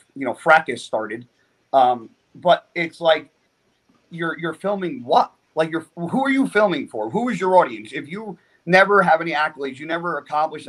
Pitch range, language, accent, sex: 135-165 Hz, English, American, male